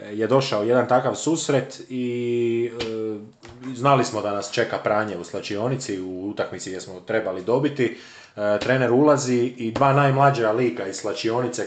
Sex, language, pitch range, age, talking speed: male, Croatian, 110-140 Hz, 30-49, 155 wpm